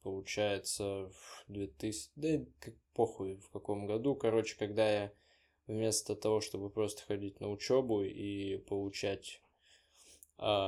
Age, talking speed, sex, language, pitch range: 10-29, 130 wpm, male, Russian, 100-110 Hz